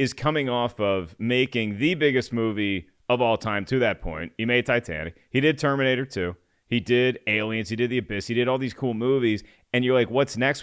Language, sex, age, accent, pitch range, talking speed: English, male, 30-49, American, 105-130 Hz, 220 wpm